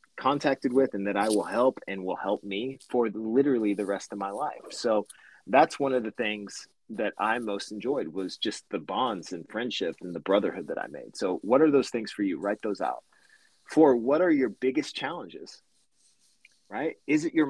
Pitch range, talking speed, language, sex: 105-145 Hz, 205 wpm, English, male